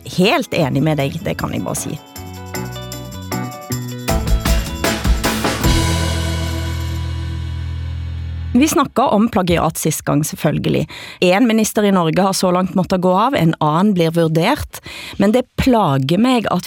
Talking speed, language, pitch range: 125 wpm, Danish, 150-205 Hz